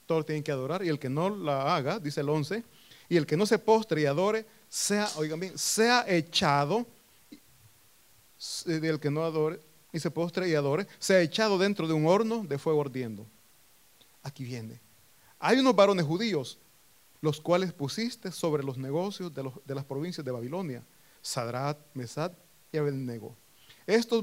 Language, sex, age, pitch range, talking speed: Italian, male, 40-59, 130-180 Hz, 165 wpm